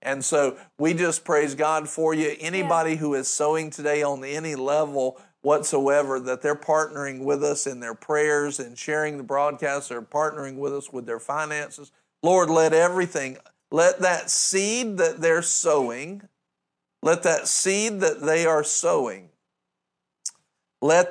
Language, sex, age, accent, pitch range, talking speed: English, male, 50-69, American, 135-165 Hz, 150 wpm